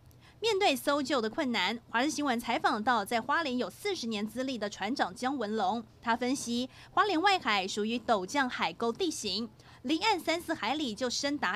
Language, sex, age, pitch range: Chinese, female, 30-49, 220-285 Hz